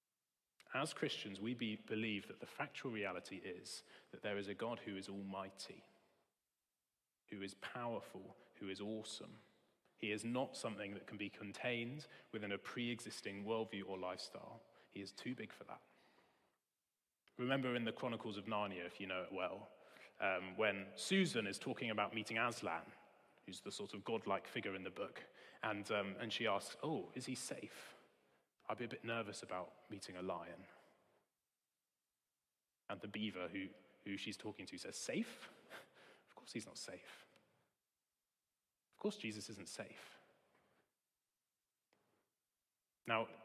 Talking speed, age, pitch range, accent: 155 wpm, 30-49, 100-125 Hz, British